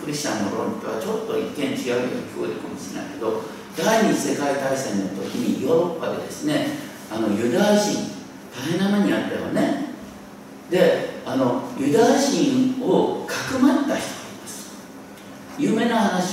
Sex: male